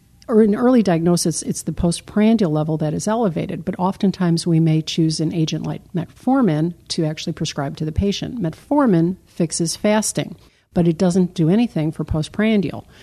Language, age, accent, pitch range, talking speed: English, 50-69, American, 160-195 Hz, 165 wpm